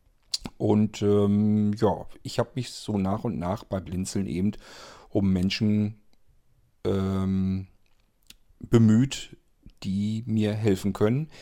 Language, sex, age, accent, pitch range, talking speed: German, male, 40-59, German, 95-115 Hz, 110 wpm